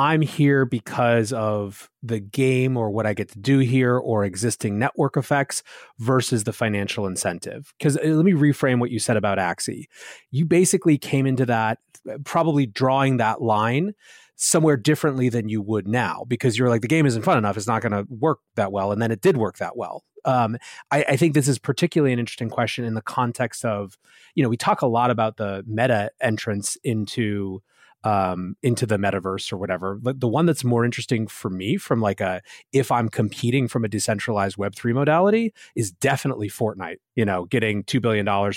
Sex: male